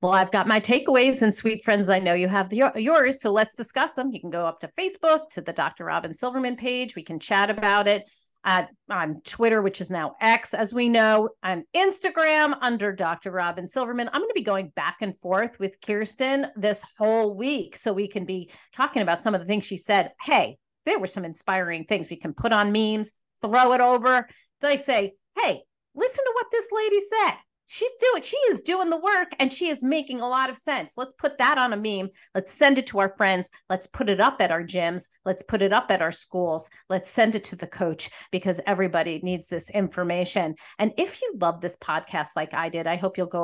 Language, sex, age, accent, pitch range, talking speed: English, female, 40-59, American, 180-255 Hz, 225 wpm